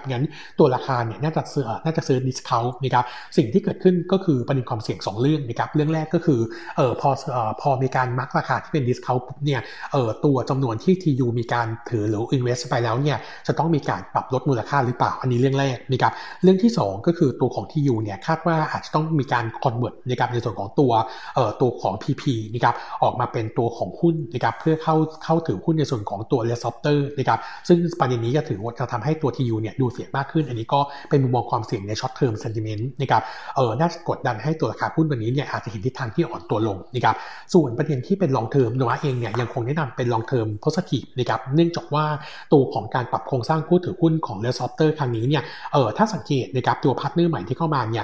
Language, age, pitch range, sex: Thai, 60-79, 120-155 Hz, male